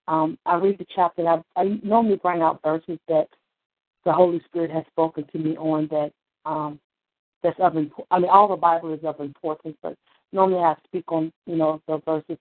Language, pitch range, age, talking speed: English, 160-195 Hz, 40-59, 210 wpm